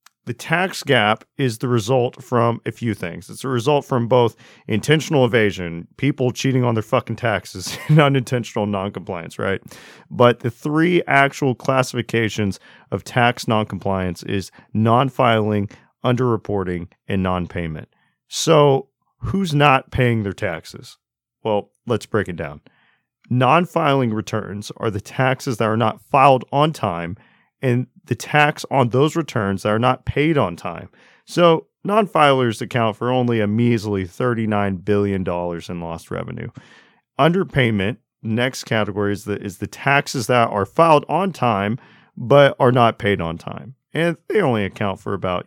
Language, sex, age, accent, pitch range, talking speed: English, male, 40-59, American, 100-135 Hz, 150 wpm